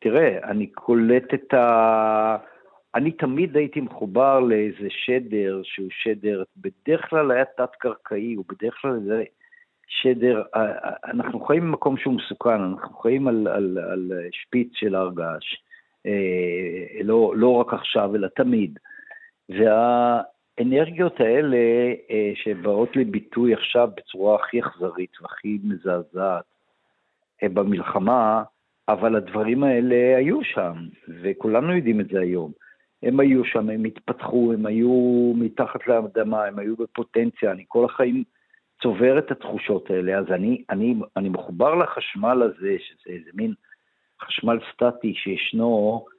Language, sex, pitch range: Hebrew, male, 105-135 Hz